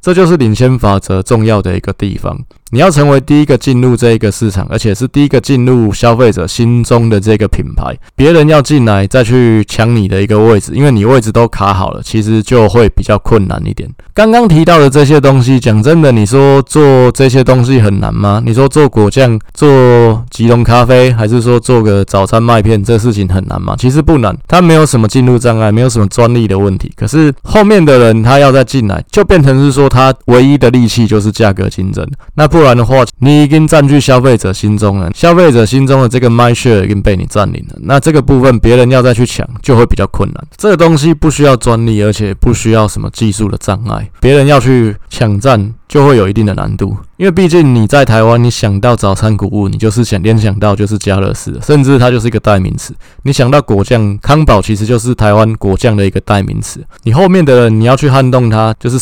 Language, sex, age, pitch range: Chinese, male, 20-39, 105-135 Hz